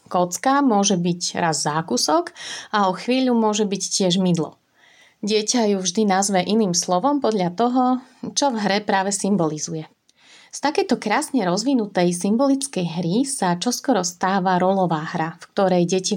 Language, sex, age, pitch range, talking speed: Slovak, female, 30-49, 180-220 Hz, 145 wpm